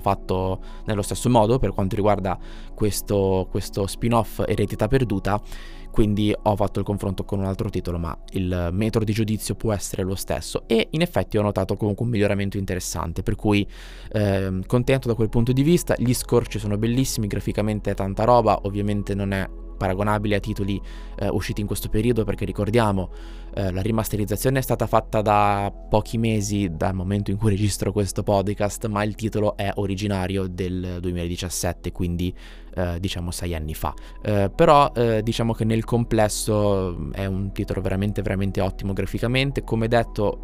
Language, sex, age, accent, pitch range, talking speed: Italian, male, 20-39, native, 95-110 Hz, 170 wpm